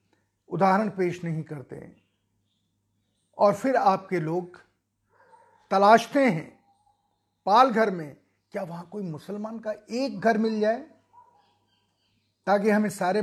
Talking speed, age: 110 wpm, 50-69